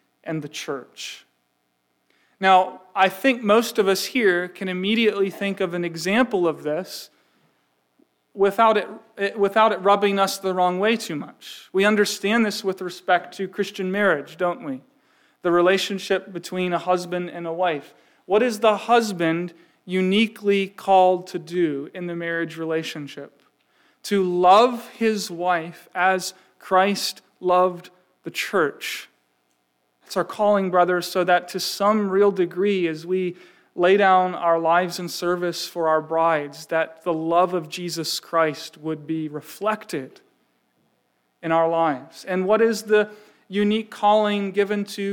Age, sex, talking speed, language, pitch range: 40-59, male, 145 wpm, English, 170-205 Hz